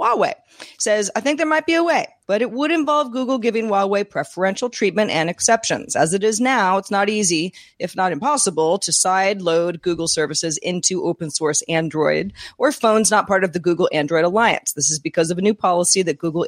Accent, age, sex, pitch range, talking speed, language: American, 40-59, female, 170-235 Hz, 205 wpm, English